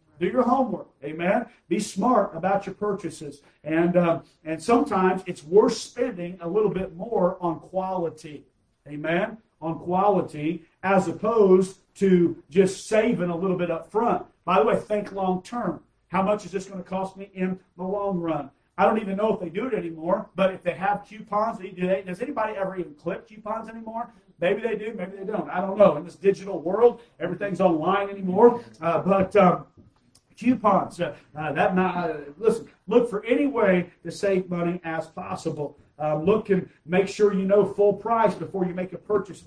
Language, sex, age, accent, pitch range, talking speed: English, male, 40-59, American, 170-200 Hz, 190 wpm